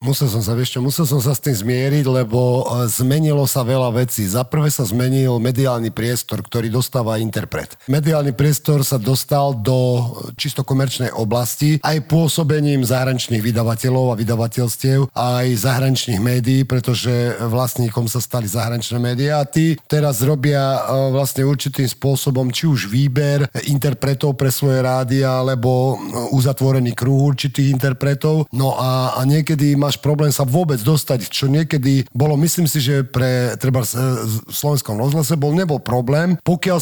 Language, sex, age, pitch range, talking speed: Slovak, male, 40-59, 120-145 Hz, 145 wpm